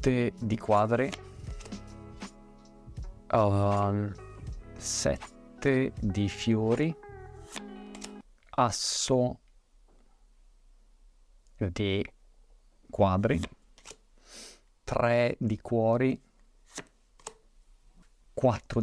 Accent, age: native, 50-69